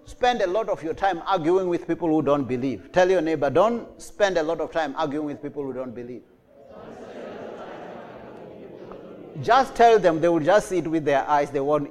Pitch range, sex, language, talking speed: 170-240 Hz, male, English, 200 wpm